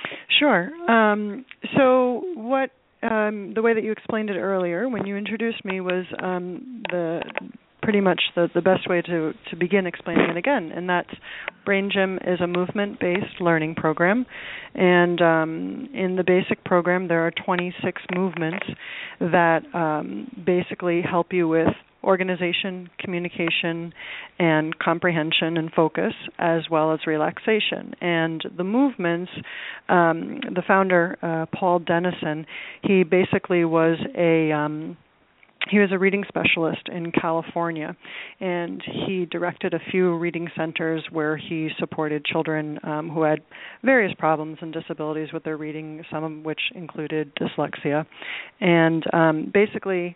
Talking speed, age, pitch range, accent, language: 140 wpm, 40-59, 160-190 Hz, American, English